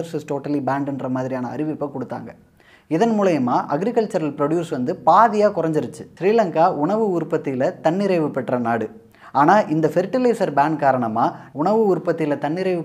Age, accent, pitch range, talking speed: 20-39, native, 155-215 Hz, 105 wpm